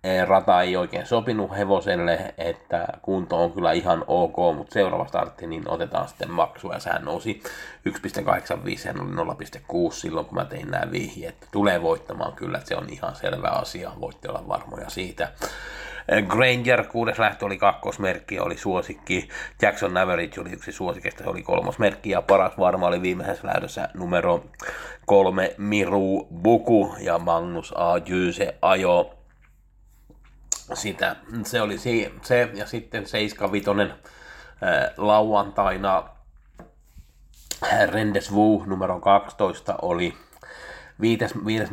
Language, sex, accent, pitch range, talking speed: Finnish, male, native, 90-105 Hz, 125 wpm